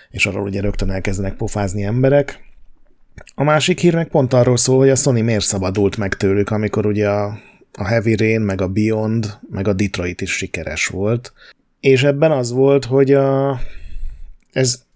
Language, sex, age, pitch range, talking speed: Hungarian, male, 30-49, 100-120 Hz, 165 wpm